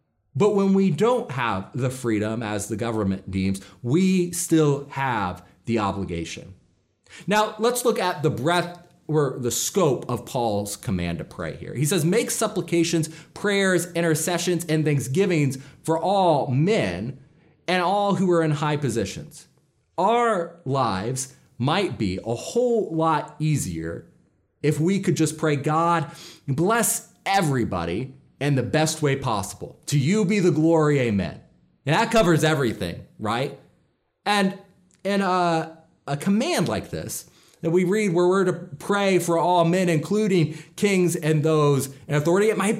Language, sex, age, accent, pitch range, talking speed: English, male, 30-49, American, 135-190 Hz, 150 wpm